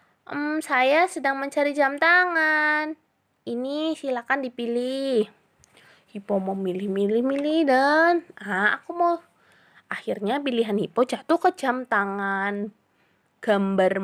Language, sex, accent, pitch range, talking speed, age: Indonesian, female, native, 220-320 Hz, 105 wpm, 20-39